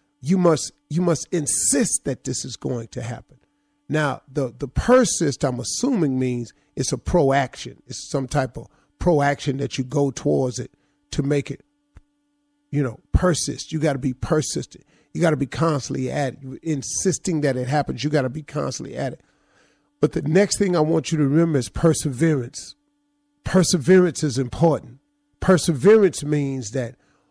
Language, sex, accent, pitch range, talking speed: English, male, American, 145-205 Hz, 170 wpm